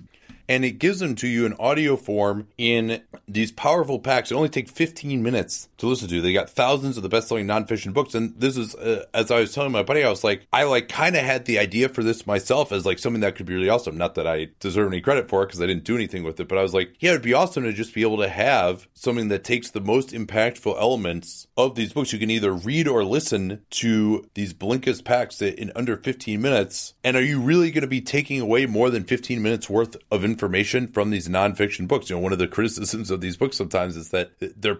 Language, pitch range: English, 95-120 Hz